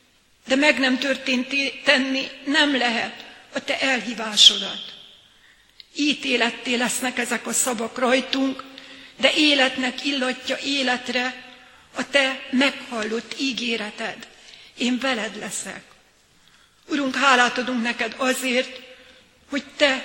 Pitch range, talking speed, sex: 240-270 Hz, 100 wpm, female